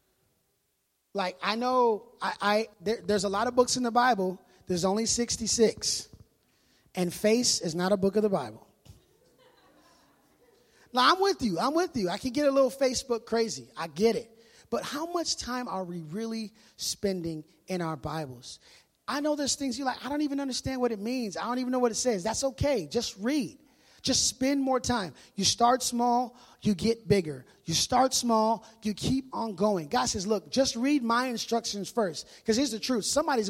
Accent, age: American, 20-39